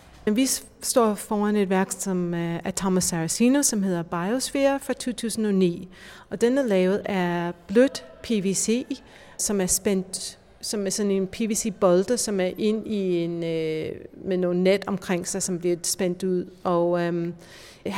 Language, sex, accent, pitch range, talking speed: Danish, female, native, 185-215 Hz, 145 wpm